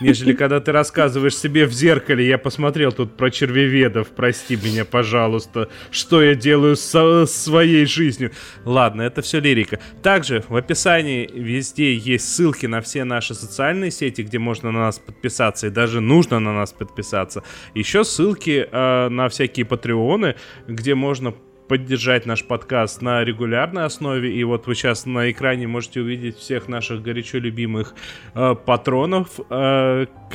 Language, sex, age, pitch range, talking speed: Russian, male, 20-39, 115-140 Hz, 150 wpm